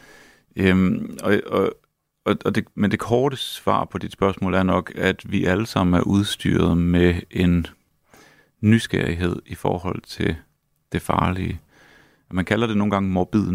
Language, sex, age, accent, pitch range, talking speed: Danish, male, 30-49, native, 90-105 Hz, 150 wpm